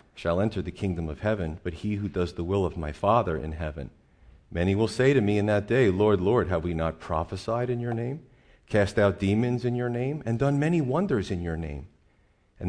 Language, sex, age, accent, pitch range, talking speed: English, male, 40-59, American, 90-120 Hz, 225 wpm